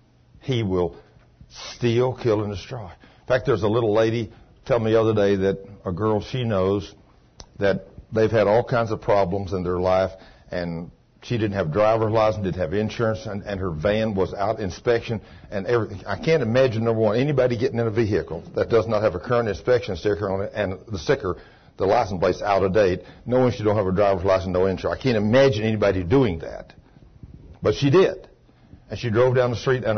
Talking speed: 210 wpm